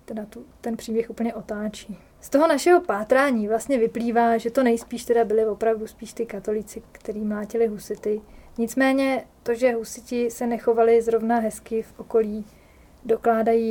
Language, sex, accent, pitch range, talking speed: Czech, female, native, 225-245 Hz, 155 wpm